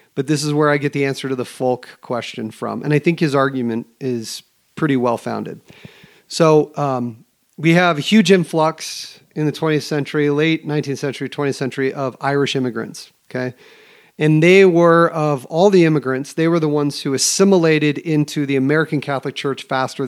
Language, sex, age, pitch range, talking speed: English, male, 40-59, 135-170 Hz, 180 wpm